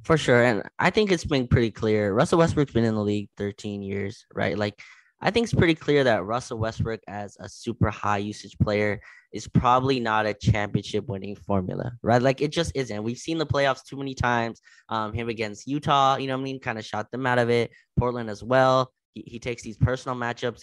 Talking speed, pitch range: 225 wpm, 105-130 Hz